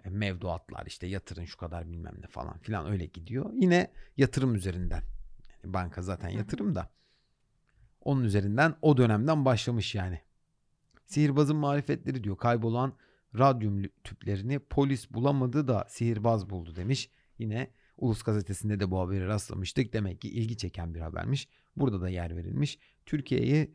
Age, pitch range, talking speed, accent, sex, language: 40-59, 100-130 Hz, 140 wpm, native, male, Turkish